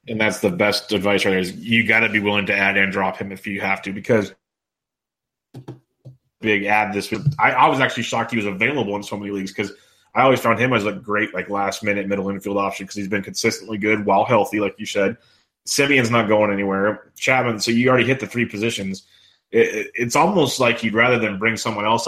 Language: English